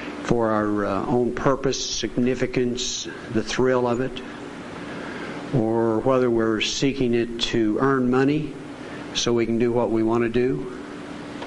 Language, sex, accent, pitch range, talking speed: English, male, American, 105-125 Hz, 140 wpm